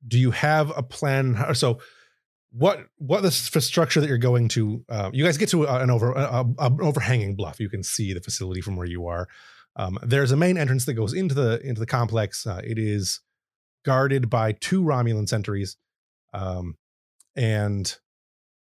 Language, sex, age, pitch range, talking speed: English, male, 30-49, 100-130 Hz, 185 wpm